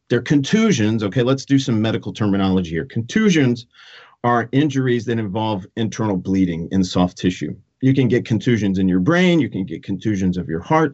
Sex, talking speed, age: male, 180 wpm, 50-69